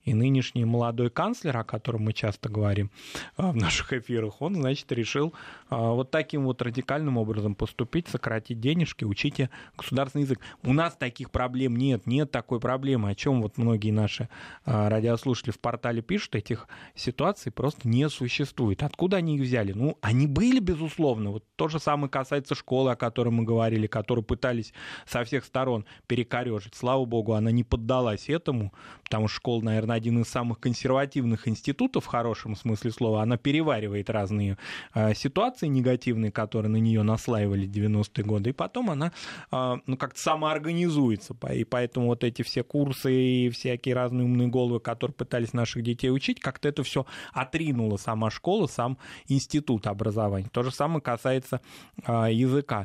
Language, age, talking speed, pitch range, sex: Russian, 20-39, 160 wpm, 115-135 Hz, male